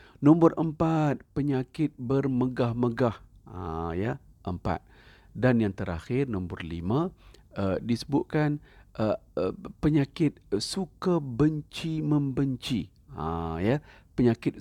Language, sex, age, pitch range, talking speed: Malay, male, 50-69, 100-145 Hz, 85 wpm